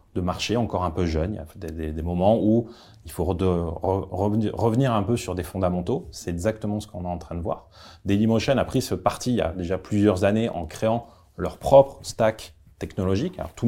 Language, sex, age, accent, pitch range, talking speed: French, male, 30-49, French, 90-110 Hz, 235 wpm